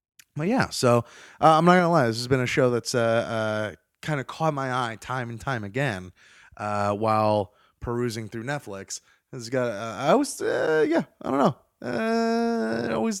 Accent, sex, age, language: American, male, 20-39, English